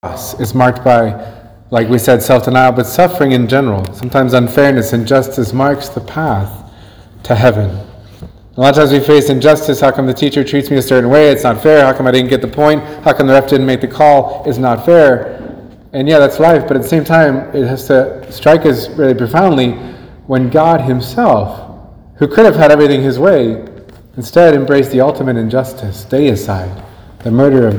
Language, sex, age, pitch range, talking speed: English, male, 30-49, 115-145 Hz, 200 wpm